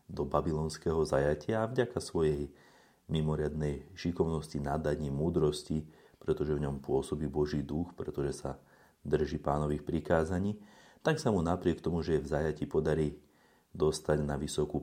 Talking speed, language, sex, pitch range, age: 140 wpm, Slovak, male, 75-85 Hz, 30-49